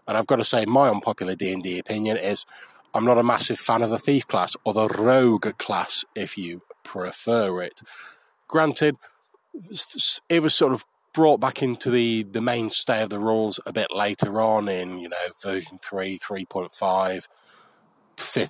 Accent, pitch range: British, 105-125 Hz